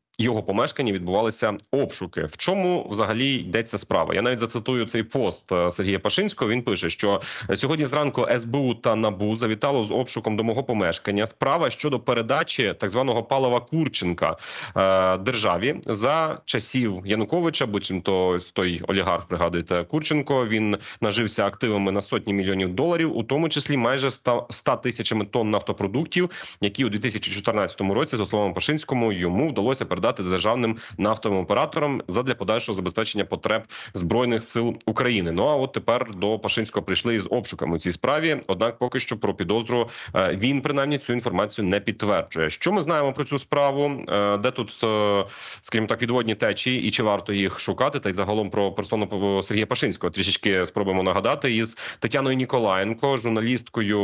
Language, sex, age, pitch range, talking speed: Ukrainian, male, 30-49, 100-125 Hz, 150 wpm